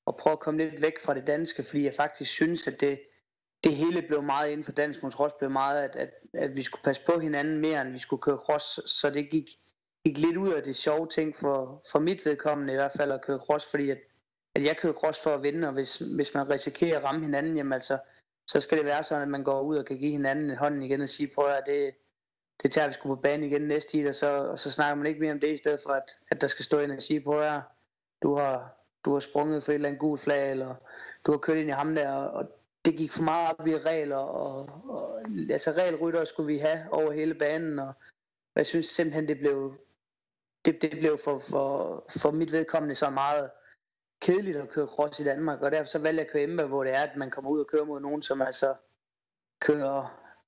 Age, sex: 20-39, male